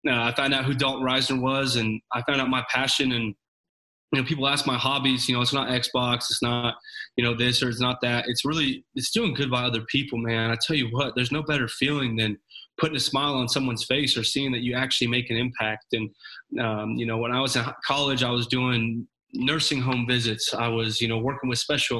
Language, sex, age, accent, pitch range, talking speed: English, male, 20-39, American, 120-140 Hz, 245 wpm